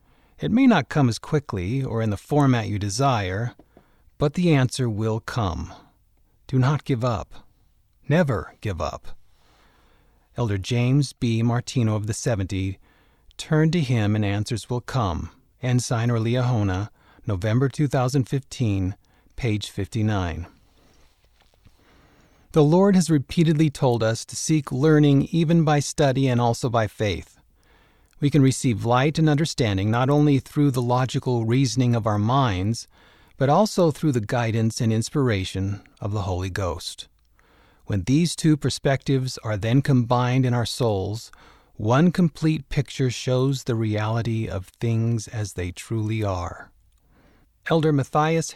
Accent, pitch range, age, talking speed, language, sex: American, 105-140 Hz, 40-59, 135 wpm, English, male